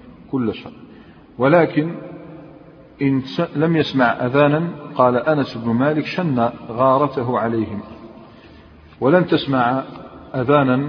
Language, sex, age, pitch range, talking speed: Arabic, male, 50-69, 120-145 Hz, 95 wpm